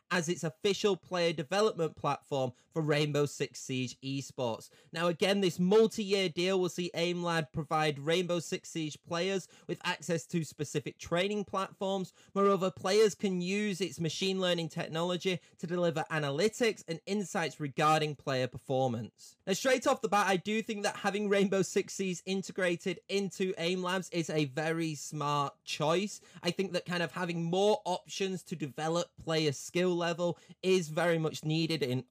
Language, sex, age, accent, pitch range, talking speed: English, male, 20-39, British, 150-195 Hz, 165 wpm